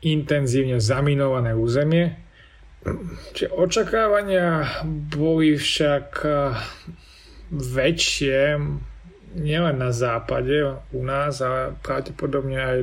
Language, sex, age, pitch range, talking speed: Slovak, male, 30-49, 120-140 Hz, 70 wpm